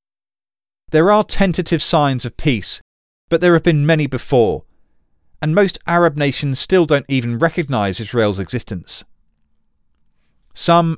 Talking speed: 125 wpm